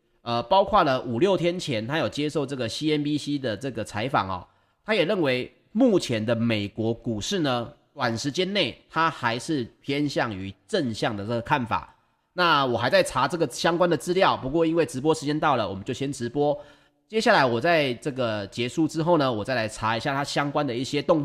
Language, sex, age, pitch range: Chinese, male, 30-49, 120-165 Hz